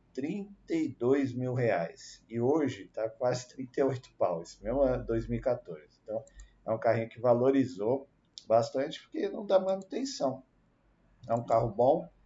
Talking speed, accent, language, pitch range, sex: 130 wpm, Brazilian, Portuguese, 110-130 Hz, male